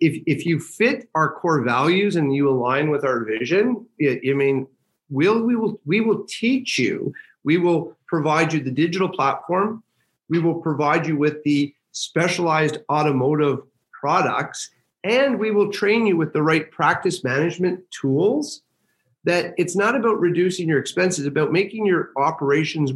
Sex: male